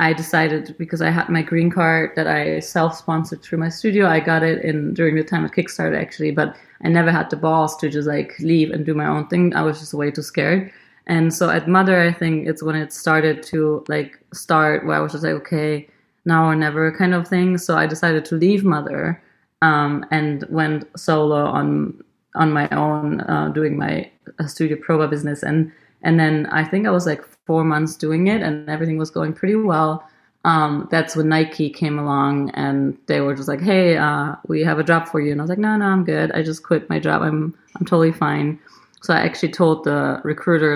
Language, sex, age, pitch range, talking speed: English, female, 30-49, 150-170 Hz, 220 wpm